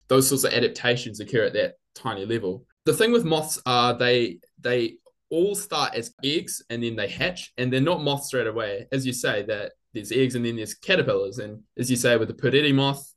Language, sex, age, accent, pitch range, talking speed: English, male, 20-39, Australian, 120-150 Hz, 220 wpm